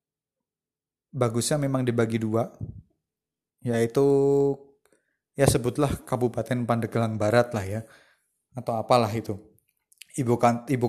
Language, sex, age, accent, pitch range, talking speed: Indonesian, male, 30-49, native, 115-135 Hz, 95 wpm